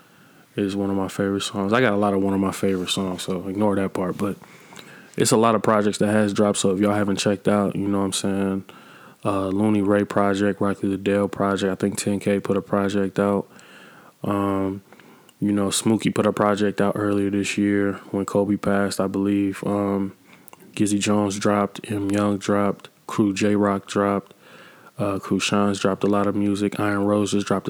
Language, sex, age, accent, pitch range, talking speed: English, male, 20-39, American, 100-105 Hz, 195 wpm